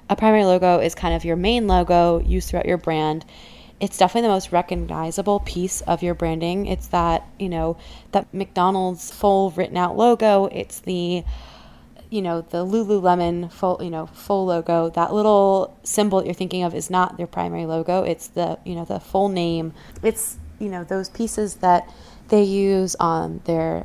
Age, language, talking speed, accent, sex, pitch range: 20-39, English, 180 wpm, American, female, 170-200 Hz